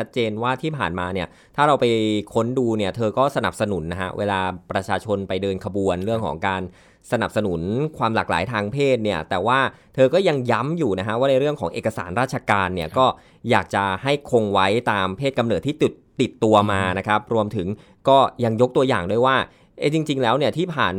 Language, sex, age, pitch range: Thai, male, 20-39, 100-130 Hz